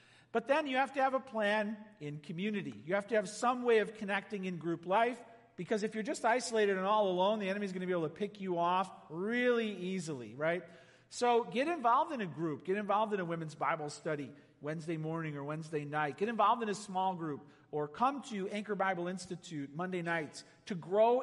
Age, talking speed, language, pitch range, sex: 50-69, 215 wpm, English, 160-225 Hz, male